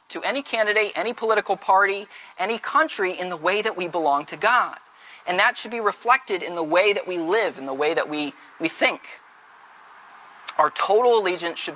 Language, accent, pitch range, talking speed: English, American, 160-230 Hz, 195 wpm